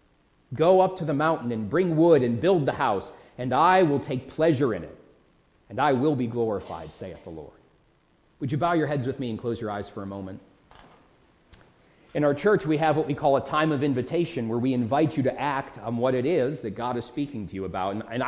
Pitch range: 110-145 Hz